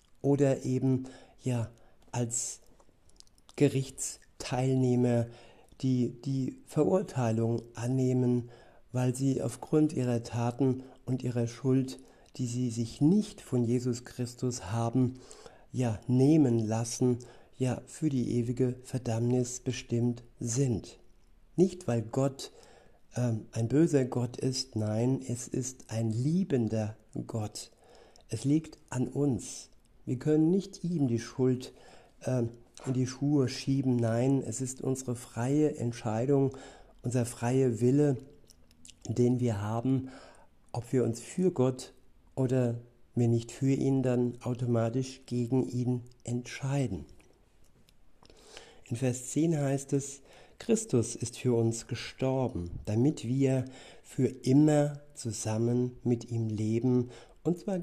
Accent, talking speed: German, 115 wpm